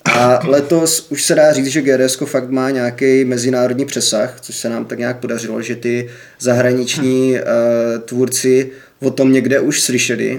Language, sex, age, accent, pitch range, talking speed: Czech, male, 20-39, native, 120-135 Hz, 165 wpm